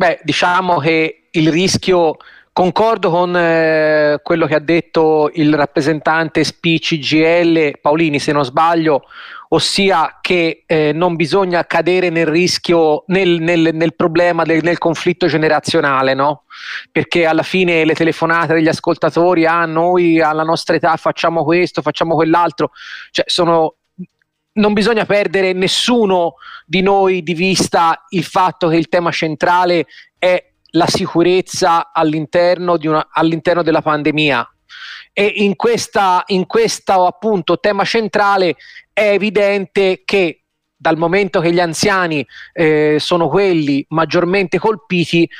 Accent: native